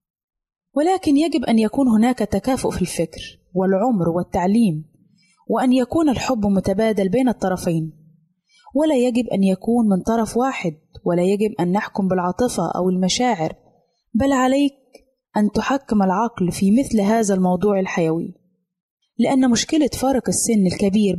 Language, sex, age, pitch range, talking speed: Arabic, female, 20-39, 185-245 Hz, 125 wpm